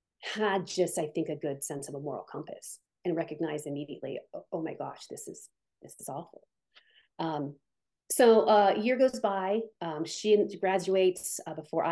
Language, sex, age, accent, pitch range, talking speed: English, female, 30-49, American, 160-220 Hz, 175 wpm